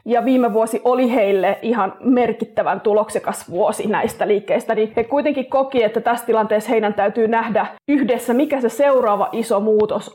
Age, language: 30-49, Finnish